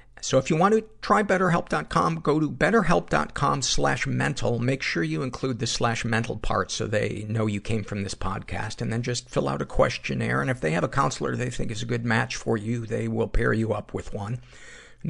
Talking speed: 225 wpm